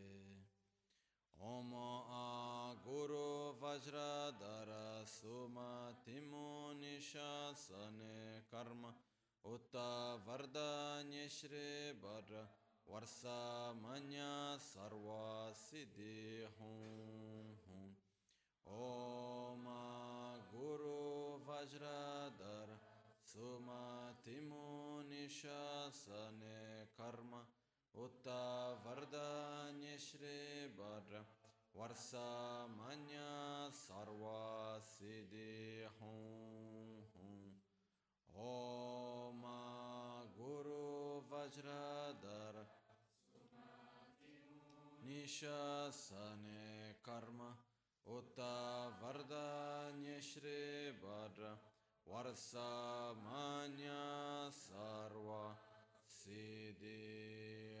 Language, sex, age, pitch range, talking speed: Italian, male, 20-39, 110-145 Hz, 40 wpm